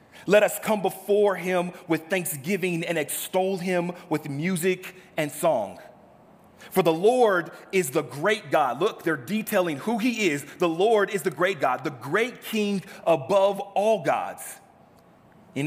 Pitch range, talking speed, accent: 150-185 Hz, 155 wpm, American